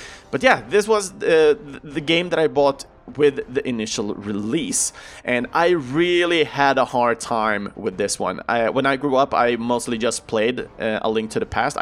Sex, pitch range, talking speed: male, 115-165 Hz, 200 wpm